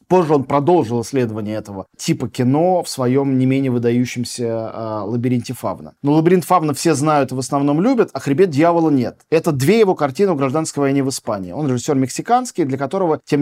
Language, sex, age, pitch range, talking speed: Russian, male, 20-39, 120-155 Hz, 190 wpm